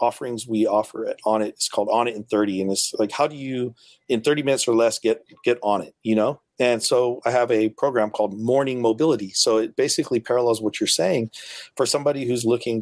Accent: American